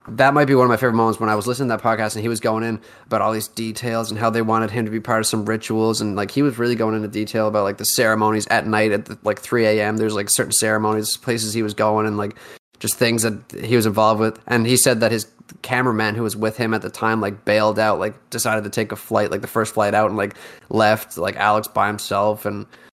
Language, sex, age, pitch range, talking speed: English, male, 20-39, 105-120 Hz, 275 wpm